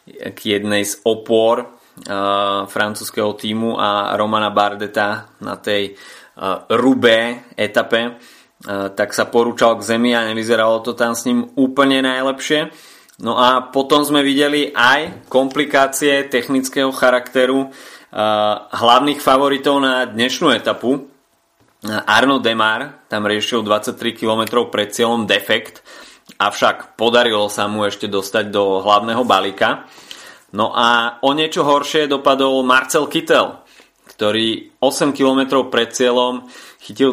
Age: 20-39